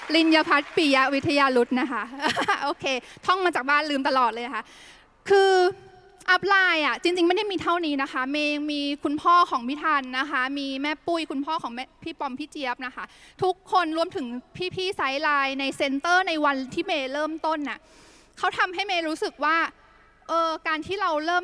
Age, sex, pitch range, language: 10-29, female, 280-360 Hz, Thai